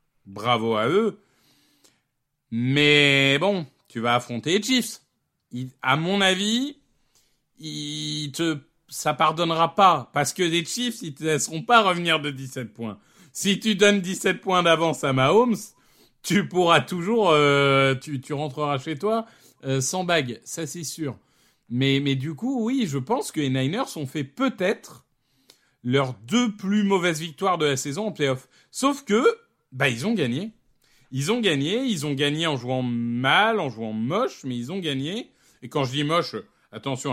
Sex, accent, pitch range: male, French, 125-175 Hz